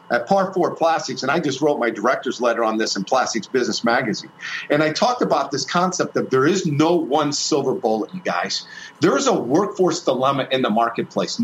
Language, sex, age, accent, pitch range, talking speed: English, male, 50-69, American, 160-230 Hz, 210 wpm